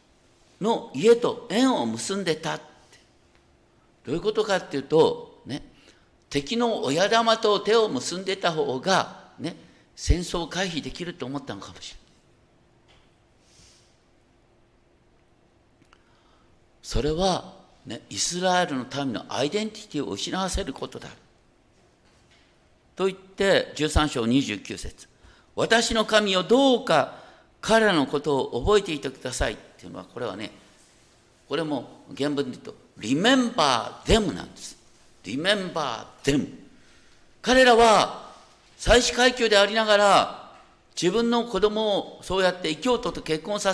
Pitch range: 140-230 Hz